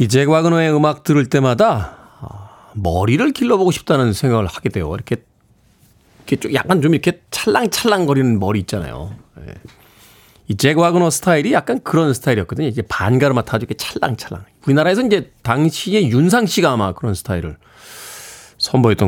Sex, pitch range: male, 110-175 Hz